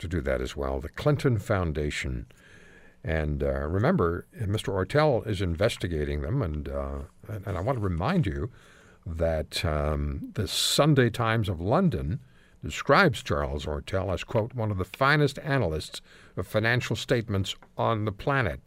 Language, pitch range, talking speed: English, 80-135 Hz, 155 wpm